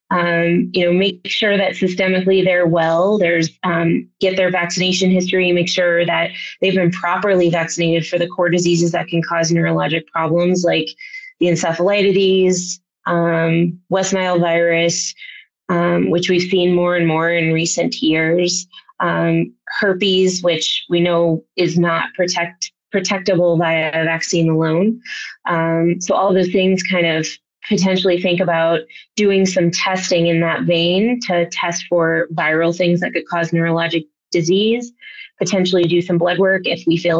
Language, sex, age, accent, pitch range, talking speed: English, female, 20-39, American, 170-190 Hz, 150 wpm